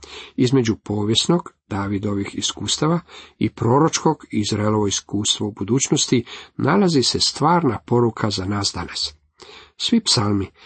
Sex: male